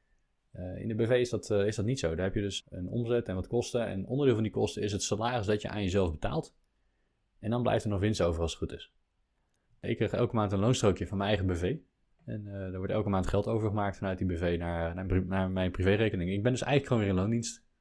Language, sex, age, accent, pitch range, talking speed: Dutch, male, 20-39, Dutch, 90-115 Hz, 255 wpm